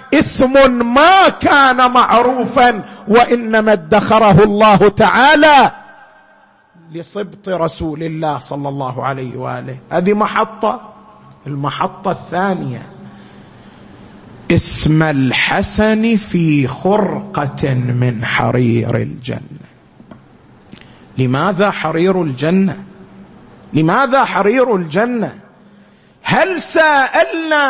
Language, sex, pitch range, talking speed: Arabic, male, 185-290 Hz, 75 wpm